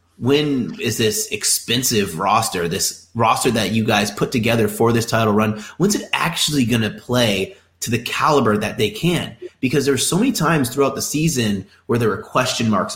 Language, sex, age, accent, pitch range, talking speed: English, male, 30-49, American, 100-140 Hz, 190 wpm